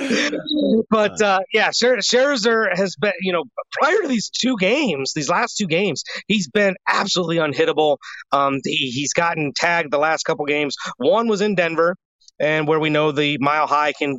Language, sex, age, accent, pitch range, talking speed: English, male, 30-49, American, 145-205 Hz, 175 wpm